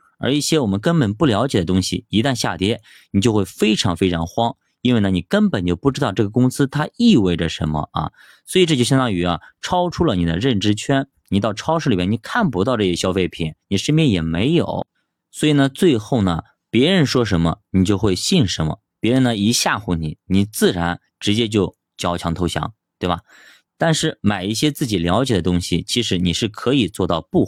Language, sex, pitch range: Chinese, male, 90-130 Hz